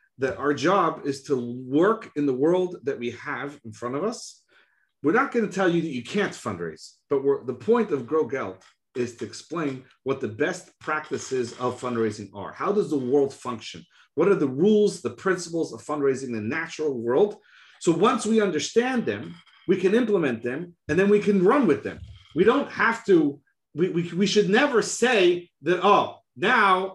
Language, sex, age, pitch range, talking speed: English, male, 40-59, 135-205 Hz, 195 wpm